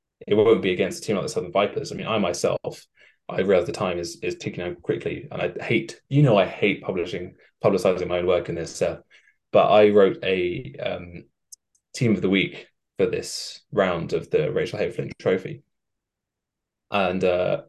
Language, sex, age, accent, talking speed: English, male, 20-39, British, 190 wpm